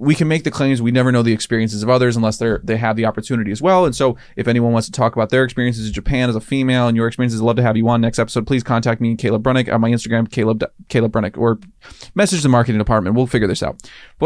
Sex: male